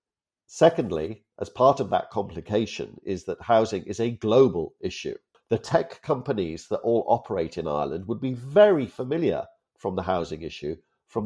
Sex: male